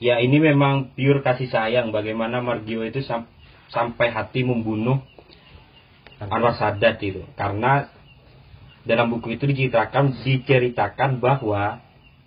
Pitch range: 110-135 Hz